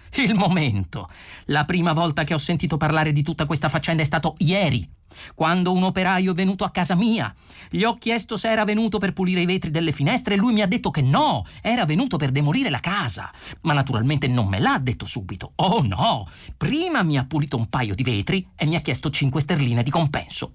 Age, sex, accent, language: 40-59, male, native, Italian